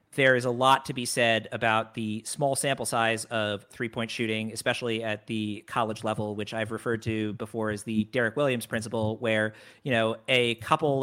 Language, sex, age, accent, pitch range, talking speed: English, male, 40-59, American, 110-130 Hz, 190 wpm